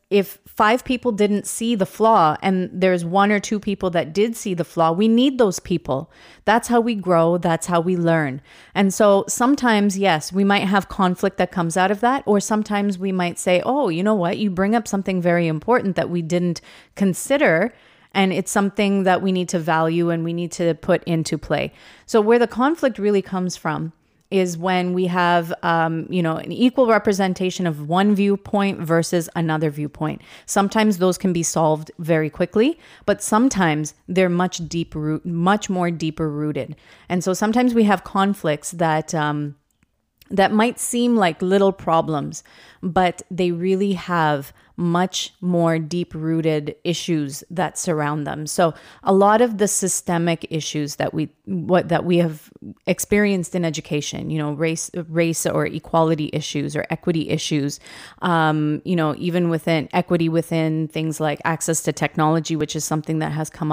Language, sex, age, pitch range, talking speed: English, female, 30-49, 160-200 Hz, 175 wpm